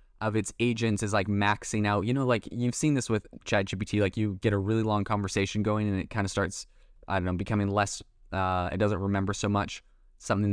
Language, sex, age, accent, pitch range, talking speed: English, male, 20-39, American, 95-115 Hz, 230 wpm